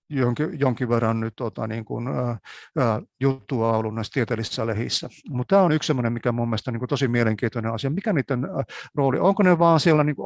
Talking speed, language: 175 wpm, Finnish